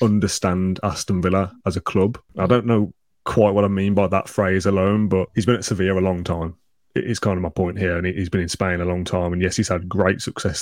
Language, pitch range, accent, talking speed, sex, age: English, 90-100 Hz, British, 260 wpm, male, 20-39